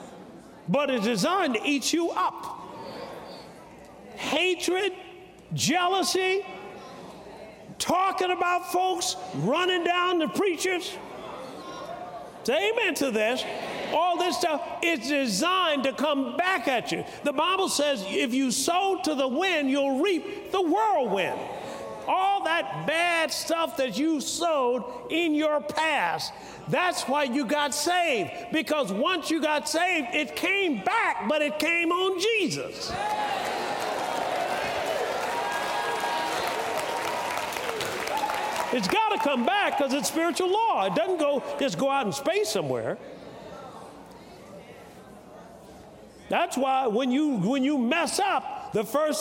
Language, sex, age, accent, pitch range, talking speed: English, male, 50-69, American, 280-360 Hz, 120 wpm